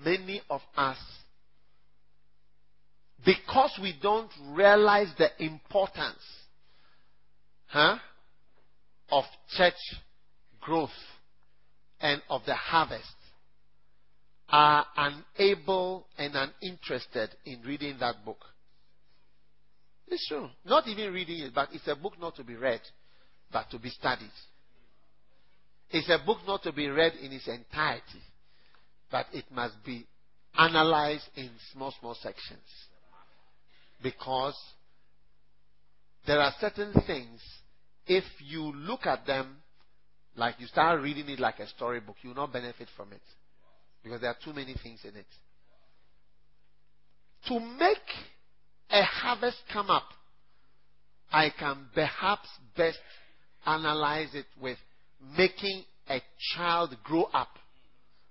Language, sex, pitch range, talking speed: English, male, 135-180 Hz, 115 wpm